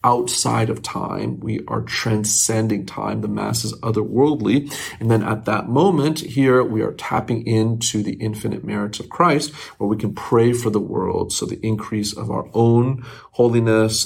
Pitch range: 105-125 Hz